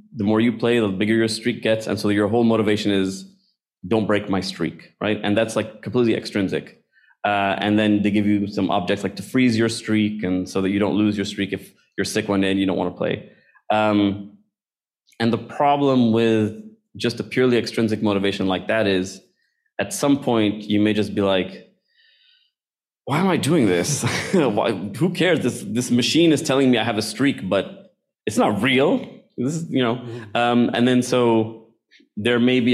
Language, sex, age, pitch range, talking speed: English, male, 20-39, 100-120 Hz, 200 wpm